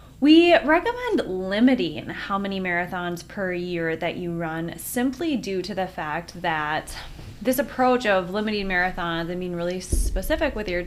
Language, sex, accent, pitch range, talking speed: English, female, American, 175-215 Hz, 155 wpm